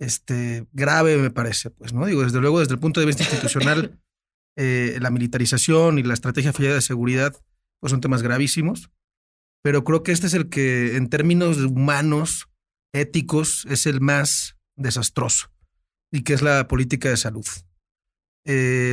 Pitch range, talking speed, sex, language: 130-160 Hz, 155 wpm, male, Spanish